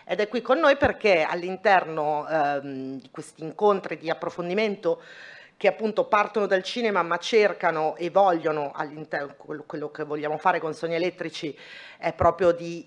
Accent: native